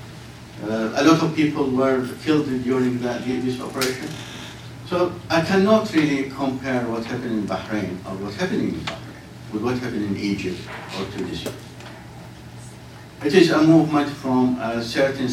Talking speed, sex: 155 wpm, male